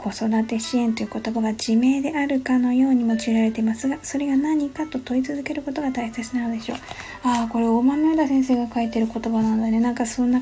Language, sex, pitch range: Japanese, female, 225-265 Hz